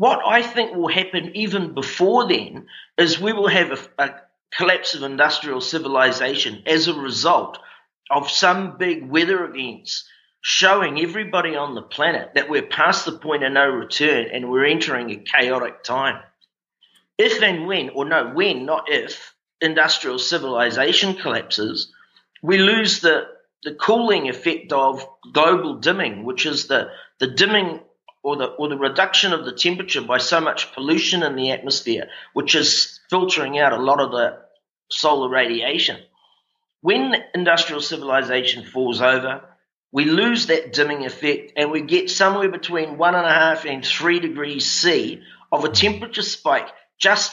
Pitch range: 145-195 Hz